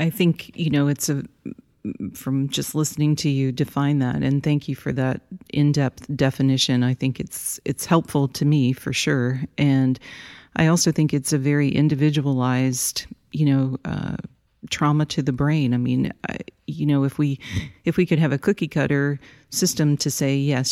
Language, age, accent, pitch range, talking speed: English, 40-59, American, 130-150 Hz, 180 wpm